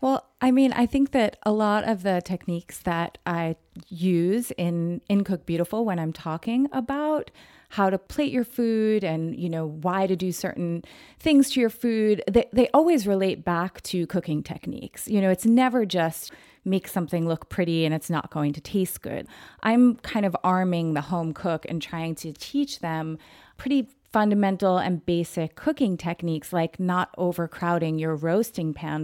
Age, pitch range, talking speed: 30-49, 165-225 Hz, 180 wpm